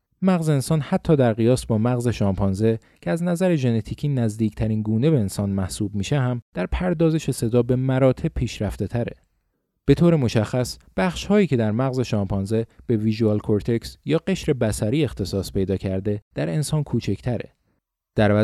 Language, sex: Persian, male